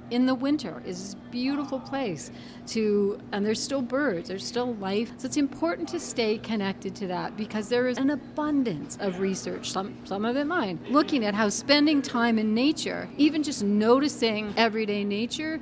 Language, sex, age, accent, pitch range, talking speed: English, female, 40-59, American, 200-265 Hz, 180 wpm